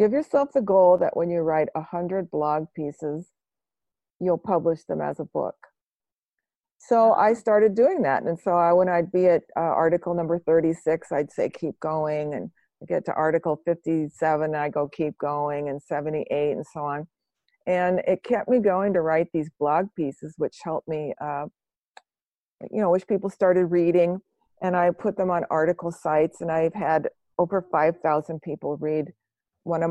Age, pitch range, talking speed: 50-69, 150-180 Hz, 175 wpm